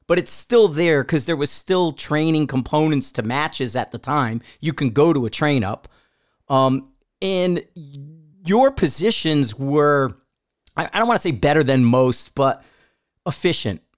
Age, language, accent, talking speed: 40-59, English, American, 160 wpm